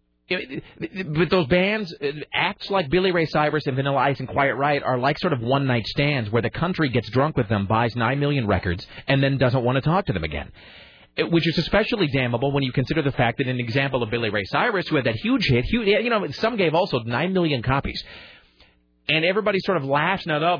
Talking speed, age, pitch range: 220 wpm, 30-49, 120-160 Hz